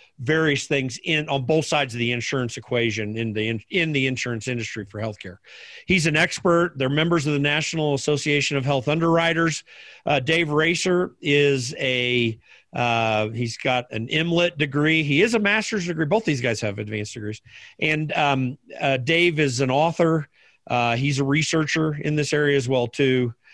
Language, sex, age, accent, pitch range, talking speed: English, male, 50-69, American, 125-160 Hz, 180 wpm